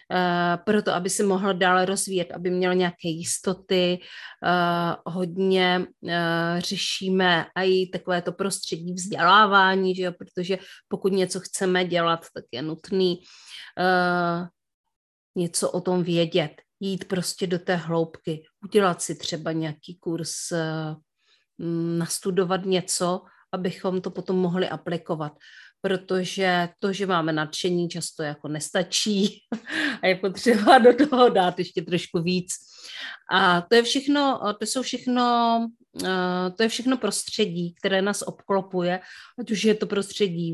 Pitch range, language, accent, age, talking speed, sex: 175-195 Hz, Czech, native, 30-49, 120 wpm, female